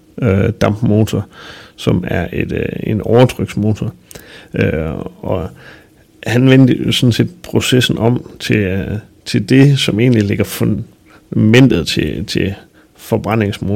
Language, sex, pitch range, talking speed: Danish, male, 100-120 Hz, 115 wpm